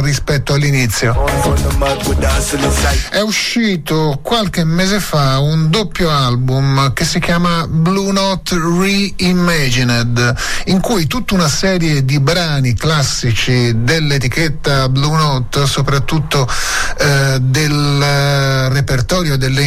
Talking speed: 100 wpm